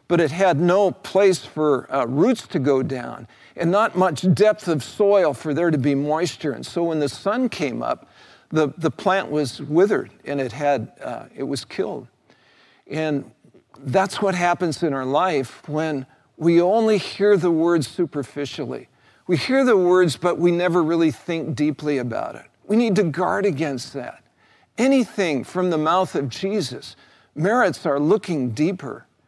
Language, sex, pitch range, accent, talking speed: English, male, 130-175 Hz, American, 170 wpm